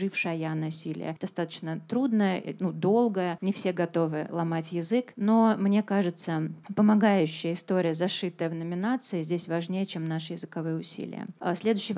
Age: 20-39